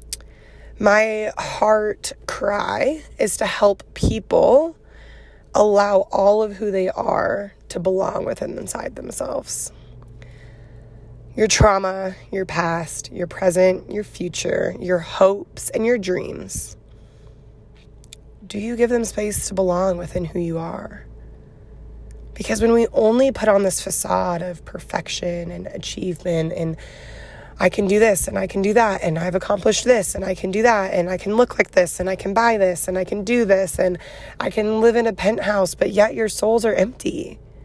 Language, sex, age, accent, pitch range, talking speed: English, female, 20-39, American, 170-210 Hz, 165 wpm